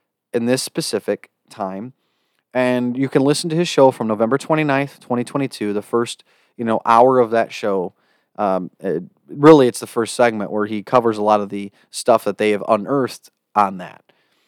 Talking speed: 180 wpm